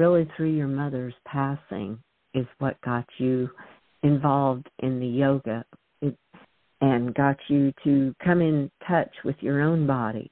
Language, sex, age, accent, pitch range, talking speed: English, female, 50-69, American, 125-145 Hz, 140 wpm